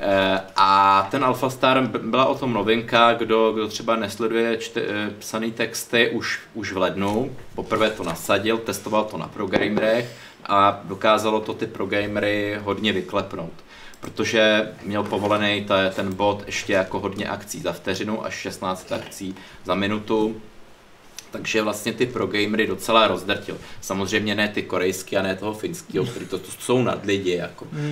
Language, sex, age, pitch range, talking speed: Czech, male, 30-49, 100-115 Hz, 155 wpm